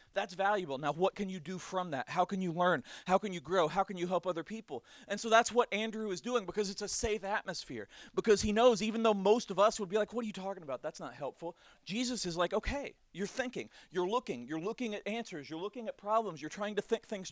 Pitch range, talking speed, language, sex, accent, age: 170-210 Hz, 260 wpm, English, male, American, 40-59